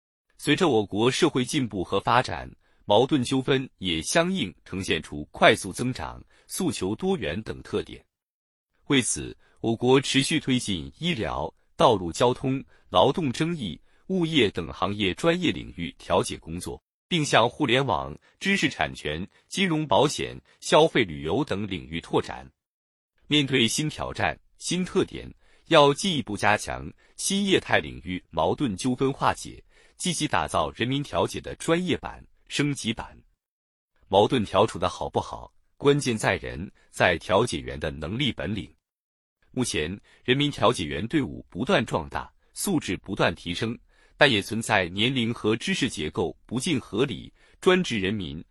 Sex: male